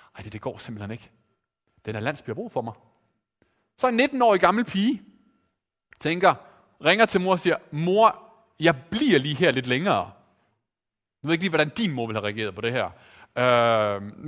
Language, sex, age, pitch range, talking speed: Danish, male, 30-49, 120-190 Hz, 190 wpm